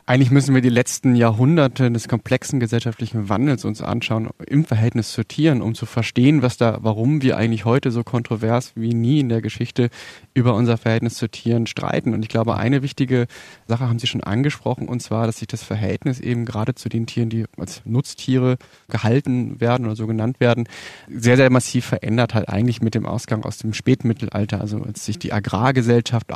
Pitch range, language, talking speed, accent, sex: 115-130 Hz, German, 195 wpm, German, male